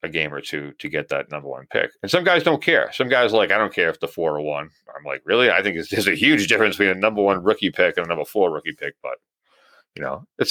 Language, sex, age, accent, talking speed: English, male, 40-59, American, 285 wpm